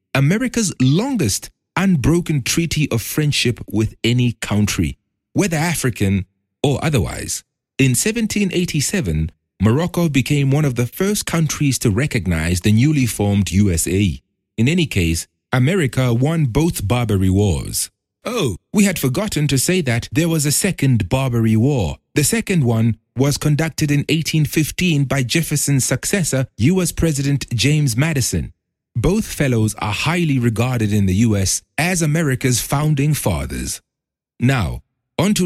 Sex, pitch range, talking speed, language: male, 105-160 Hz, 130 wpm, English